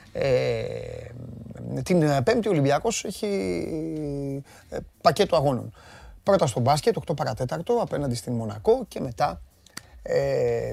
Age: 30-49